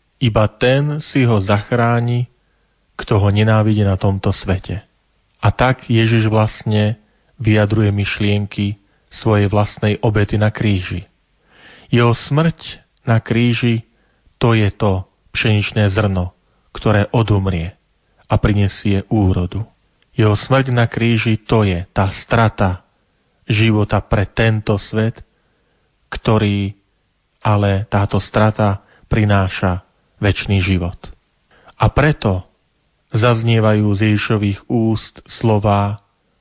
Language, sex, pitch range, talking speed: Slovak, male, 100-115 Hz, 100 wpm